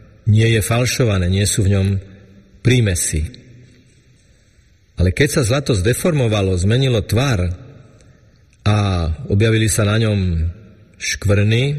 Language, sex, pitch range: Slovak, male, 95-125 Hz